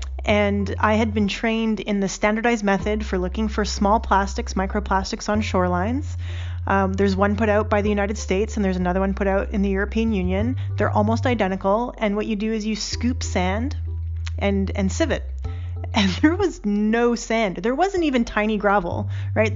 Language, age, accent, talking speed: English, 30-49, American, 190 wpm